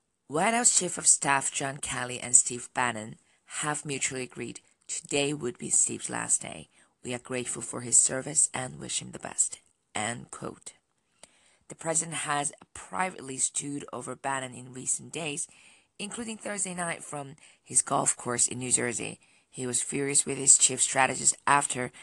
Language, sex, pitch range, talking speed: English, female, 125-150 Hz, 160 wpm